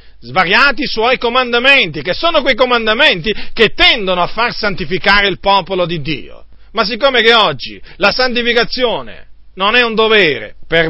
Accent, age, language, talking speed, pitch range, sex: native, 40-59, Italian, 155 wpm, 160-225 Hz, male